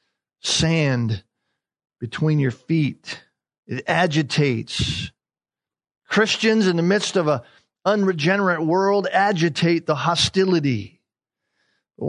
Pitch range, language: 140-180 Hz, English